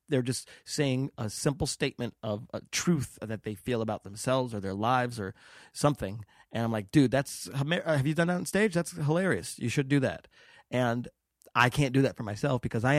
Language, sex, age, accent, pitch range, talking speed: English, male, 30-49, American, 105-130 Hz, 205 wpm